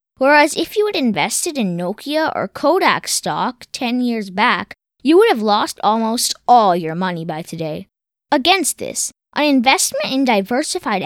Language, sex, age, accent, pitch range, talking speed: English, female, 10-29, American, 205-300 Hz, 155 wpm